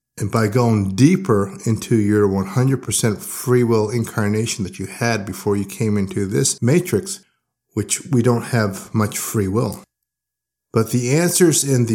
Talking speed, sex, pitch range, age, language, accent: 155 wpm, male, 110-140 Hz, 50-69, English, American